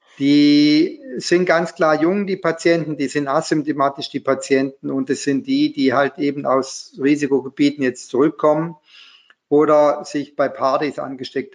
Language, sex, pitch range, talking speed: German, male, 140-170 Hz, 145 wpm